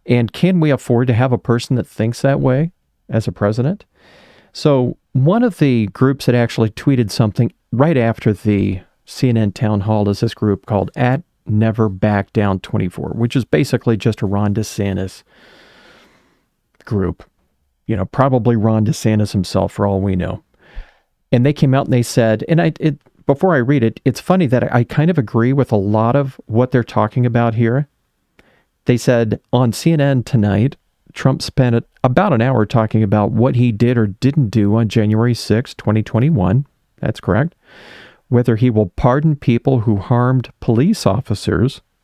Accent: American